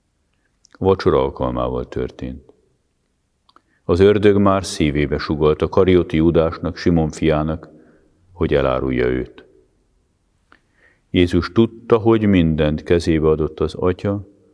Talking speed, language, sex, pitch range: 100 wpm, Hungarian, male, 80-100 Hz